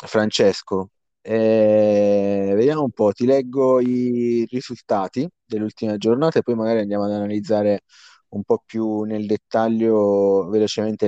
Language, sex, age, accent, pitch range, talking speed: Italian, male, 30-49, native, 100-125 Hz, 125 wpm